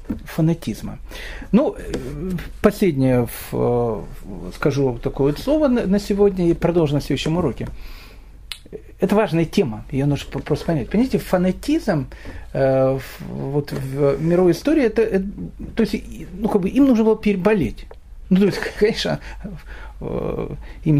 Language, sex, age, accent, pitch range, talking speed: Russian, male, 40-59, native, 145-210 Hz, 100 wpm